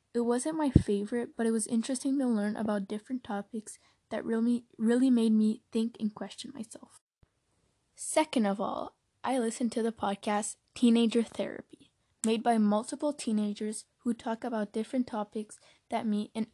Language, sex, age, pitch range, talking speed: English, female, 10-29, 210-240 Hz, 160 wpm